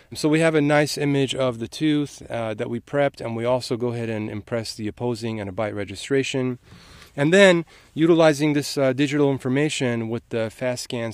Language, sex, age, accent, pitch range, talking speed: English, male, 30-49, American, 110-140 Hz, 195 wpm